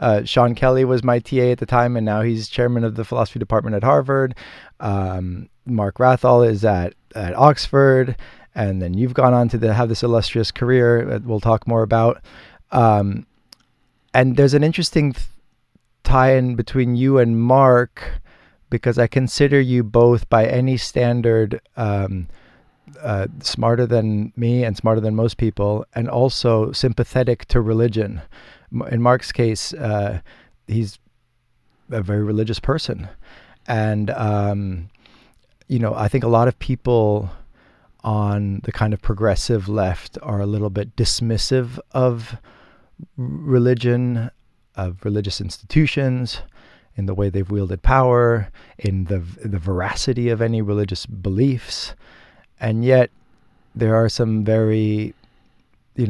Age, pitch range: 20-39, 105-125 Hz